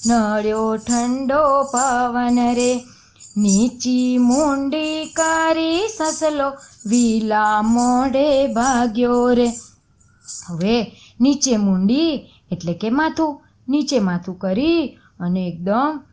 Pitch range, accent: 225-290 Hz, native